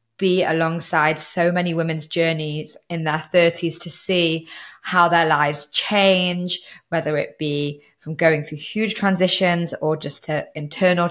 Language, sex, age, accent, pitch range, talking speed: English, female, 20-39, British, 155-180 Hz, 145 wpm